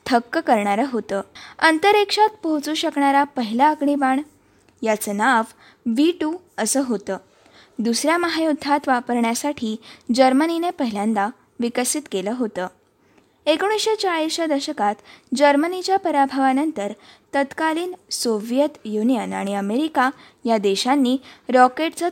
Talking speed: 95 wpm